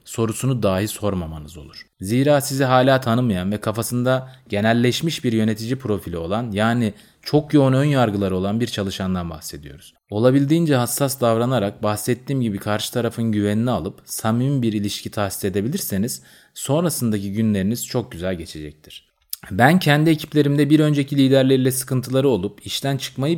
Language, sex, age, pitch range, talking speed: Turkish, male, 30-49, 100-135 Hz, 135 wpm